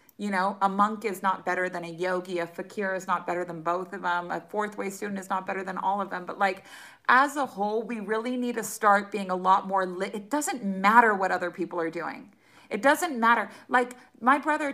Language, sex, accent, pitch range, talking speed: English, female, American, 175-215 Hz, 240 wpm